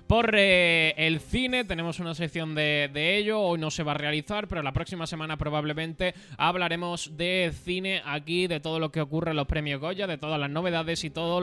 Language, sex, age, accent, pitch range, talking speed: Spanish, male, 20-39, Spanish, 155-190 Hz, 210 wpm